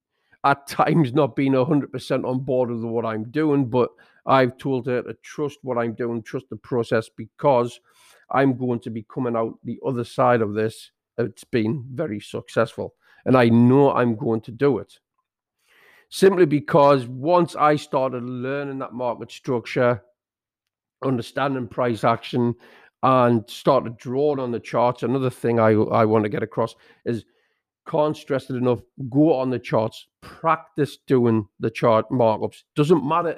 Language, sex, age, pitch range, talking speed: English, male, 50-69, 120-140 Hz, 160 wpm